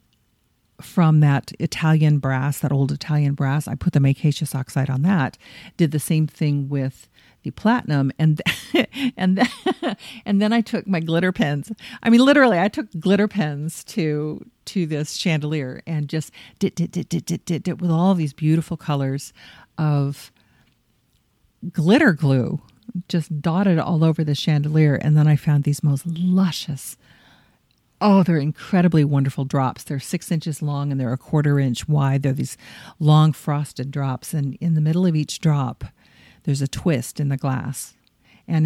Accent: American